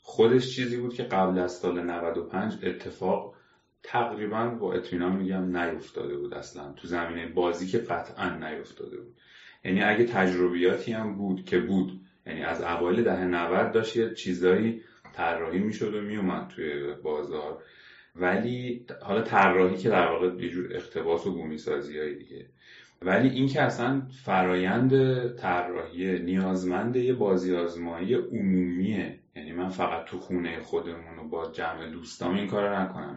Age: 30-49